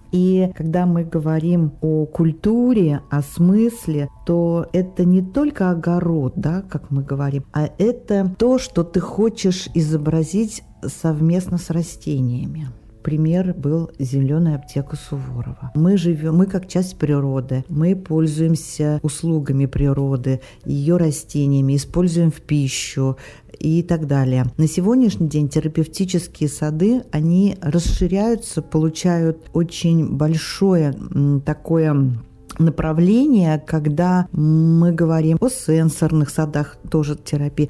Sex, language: female, Russian